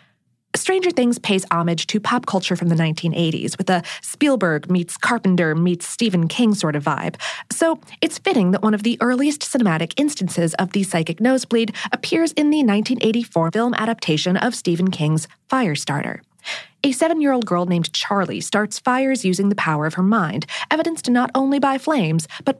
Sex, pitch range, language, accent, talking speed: female, 175-260 Hz, English, American, 170 wpm